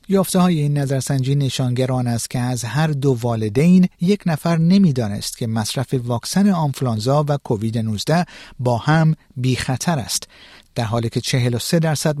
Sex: male